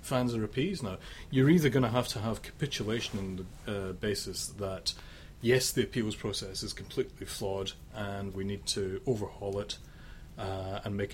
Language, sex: English, male